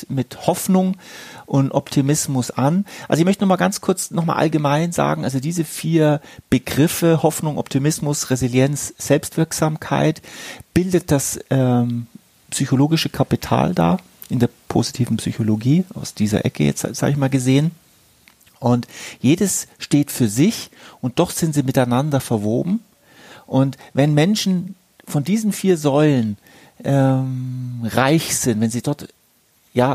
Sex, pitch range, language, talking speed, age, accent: male, 120-165 Hz, German, 135 wpm, 40-59, German